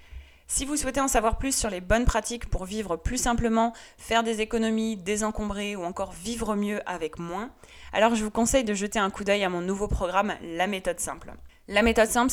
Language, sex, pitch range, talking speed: French, female, 185-225 Hz, 210 wpm